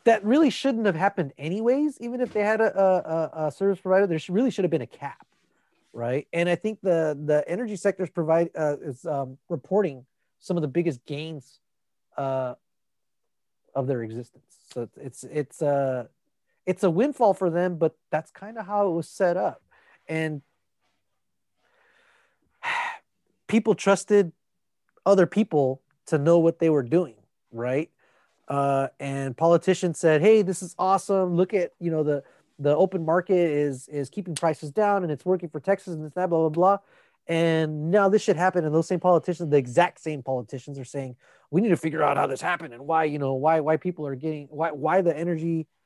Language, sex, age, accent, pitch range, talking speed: English, male, 30-49, American, 140-185 Hz, 185 wpm